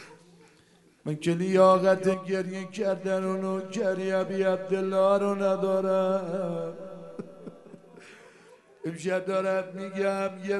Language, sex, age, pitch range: Persian, male, 60-79, 170-195 Hz